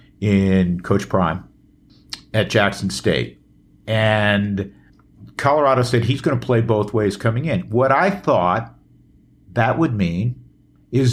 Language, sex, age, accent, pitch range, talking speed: English, male, 50-69, American, 95-125 Hz, 130 wpm